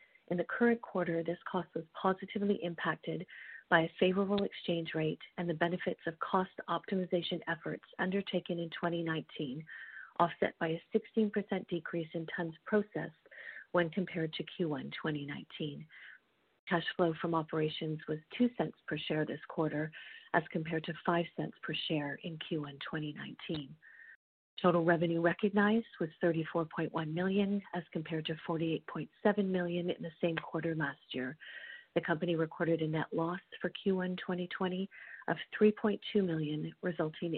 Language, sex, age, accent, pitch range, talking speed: English, female, 40-59, American, 165-190 Hz, 140 wpm